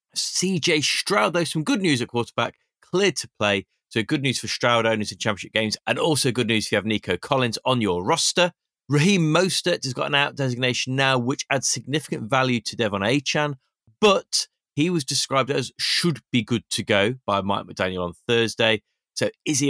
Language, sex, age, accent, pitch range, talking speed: English, male, 30-49, British, 105-145 Hz, 195 wpm